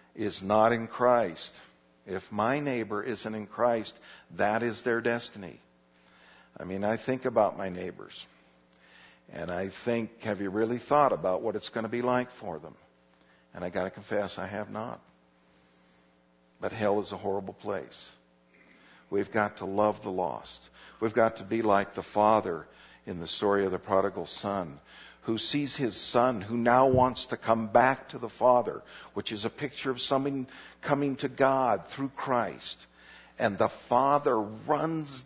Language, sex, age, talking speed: English, male, 60-79, 170 wpm